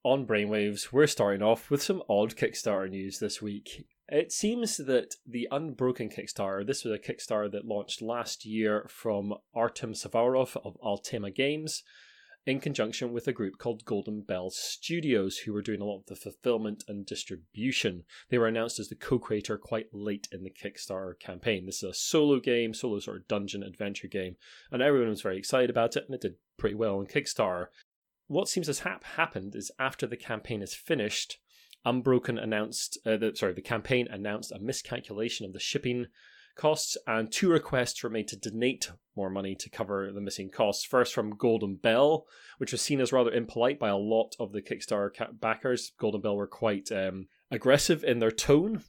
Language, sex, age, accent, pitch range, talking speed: English, male, 30-49, British, 100-125 Hz, 185 wpm